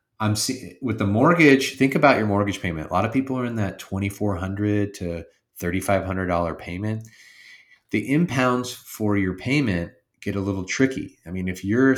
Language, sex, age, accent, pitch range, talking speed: English, male, 30-49, American, 85-105 Hz, 170 wpm